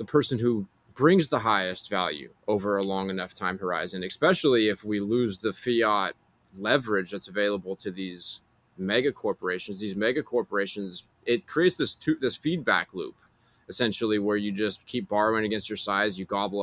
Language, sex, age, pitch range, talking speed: English, male, 20-39, 100-120 Hz, 170 wpm